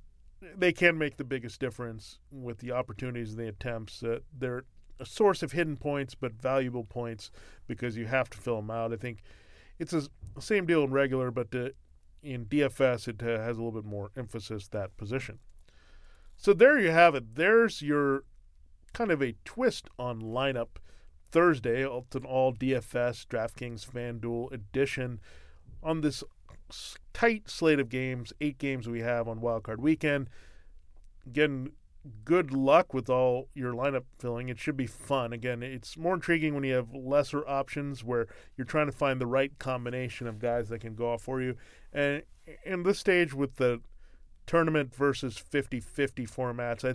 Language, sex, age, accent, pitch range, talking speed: English, male, 40-59, American, 115-140 Hz, 170 wpm